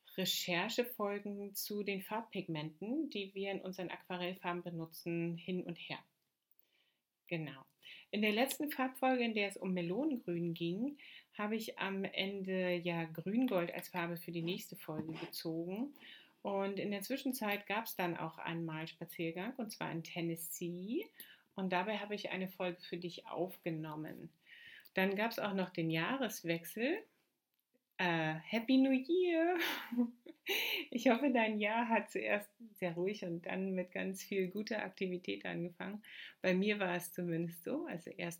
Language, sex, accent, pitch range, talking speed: German, female, German, 175-220 Hz, 145 wpm